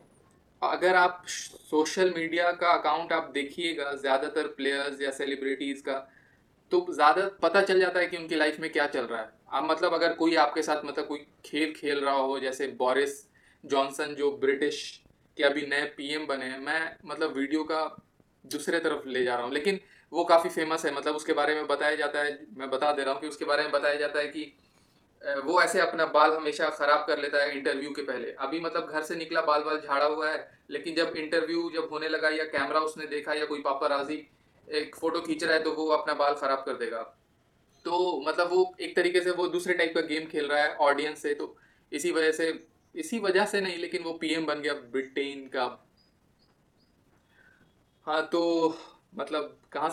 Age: 20-39